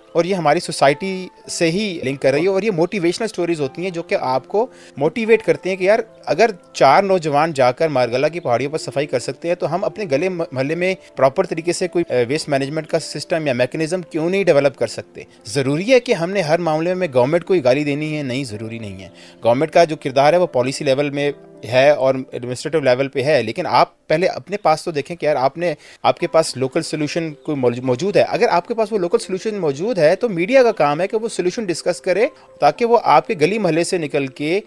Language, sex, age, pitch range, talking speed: Urdu, male, 30-49, 140-195 Hz, 210 wpm